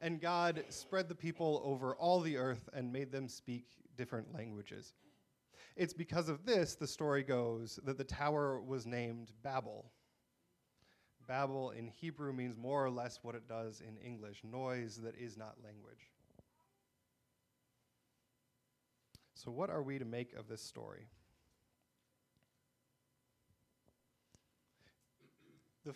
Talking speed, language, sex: 125 wpm, English, male